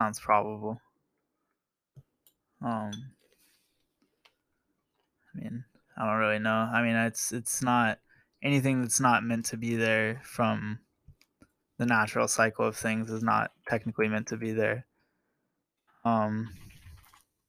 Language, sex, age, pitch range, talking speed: English, male, 20-39, 110-120 Hz, 120 wpm